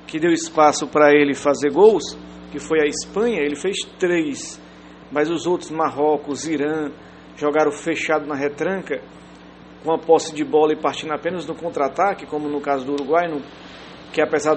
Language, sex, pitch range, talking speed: English, male, 145-175 Hz, 170 wpm